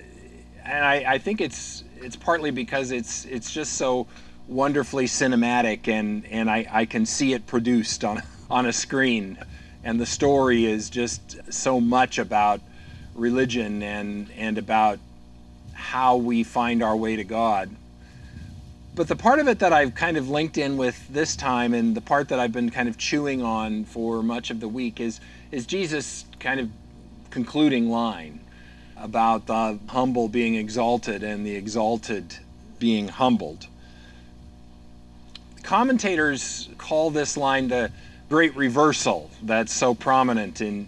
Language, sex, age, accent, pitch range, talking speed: English, male, 40-59, American, 95-130 Hz, 150 wpm